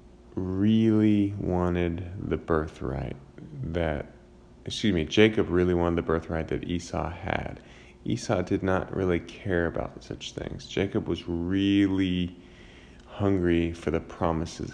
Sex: male